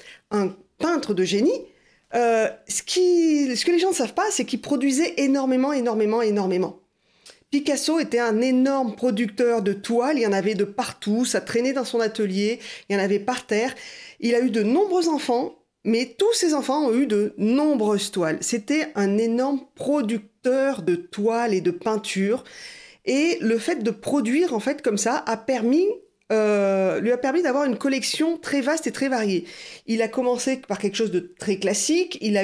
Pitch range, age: 210-285 Hz, 40-59